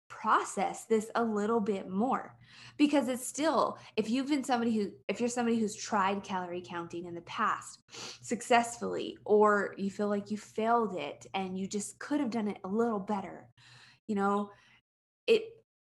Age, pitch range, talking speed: 20-39, 195-230 Hz, 170 wpm